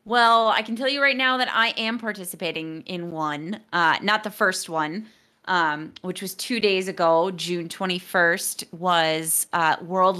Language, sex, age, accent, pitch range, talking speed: English, female, 30-49, American, 160-205 Hz, 170 wpm